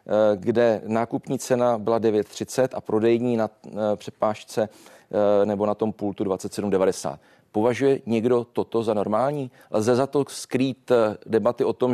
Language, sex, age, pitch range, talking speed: Czech, male, 40-59, 110-125 Hz, 130 wpm